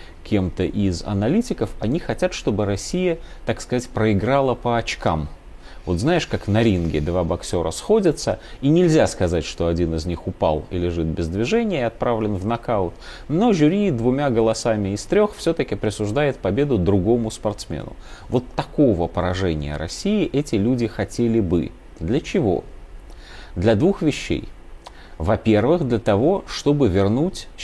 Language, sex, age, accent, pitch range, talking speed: Russian, male, 30-49, native, 90-135 Hz, 140 wpm